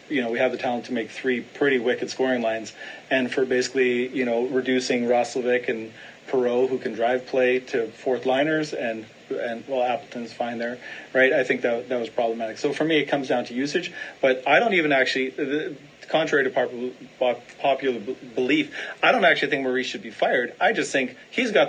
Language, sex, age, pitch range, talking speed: English, male, 30-49, 120-140 Hz, 200 wpm